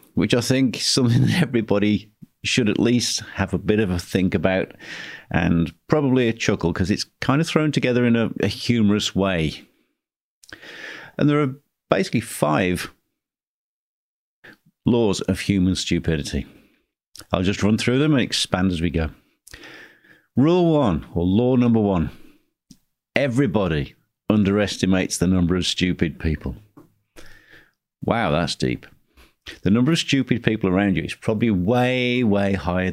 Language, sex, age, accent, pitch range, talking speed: English, male, 50-69, British, 90-125 Hz, 145 wpm